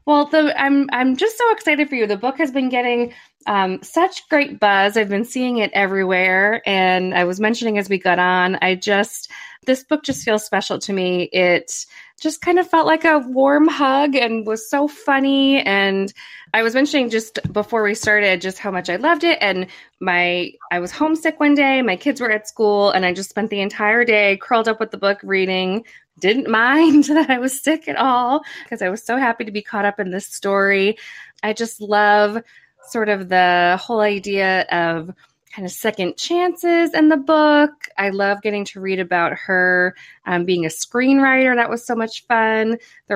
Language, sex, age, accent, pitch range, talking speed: English, female, 20-39, American, 190-270 Hz, 200 wpm